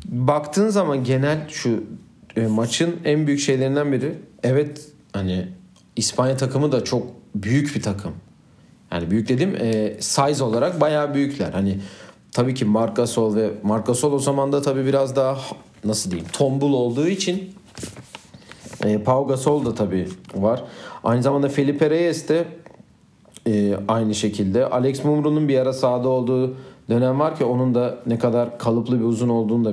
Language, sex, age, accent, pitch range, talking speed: Turkish, male, 40-59, native, 115-145 Hz, 155 wpm